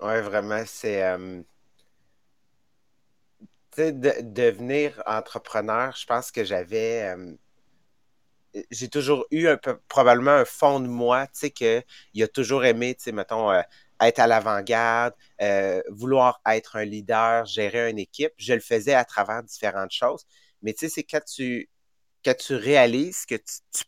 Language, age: English, 30-49